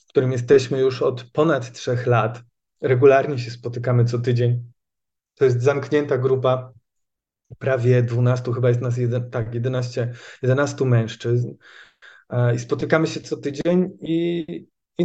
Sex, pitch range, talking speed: male, 120-140 Hz, 135 wpm